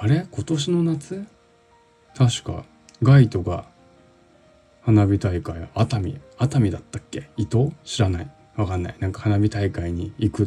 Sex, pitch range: male, 95-130 Hz